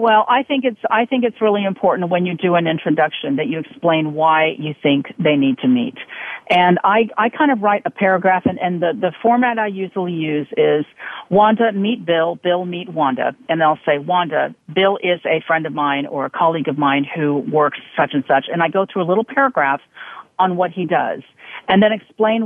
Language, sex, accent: English, female, American